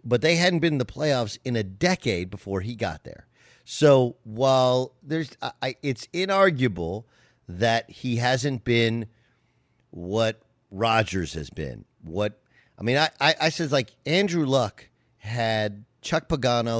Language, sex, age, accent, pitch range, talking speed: English, male, 50-69, American, 110-145 Hz, 145 wpm